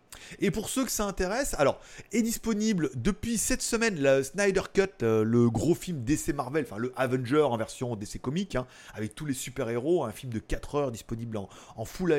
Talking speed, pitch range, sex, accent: 205 wpm, 125-190 Hz, male, French